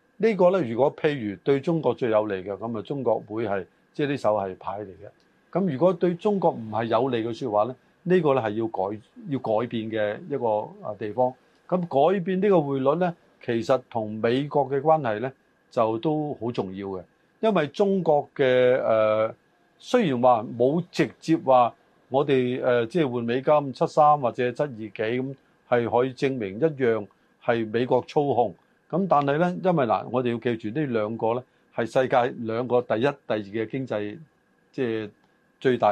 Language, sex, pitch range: Chinese, male, 115-150 Hz